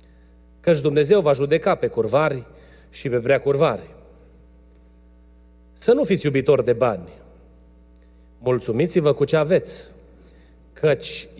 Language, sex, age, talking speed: Romanian, male, 40-59, 105 wpm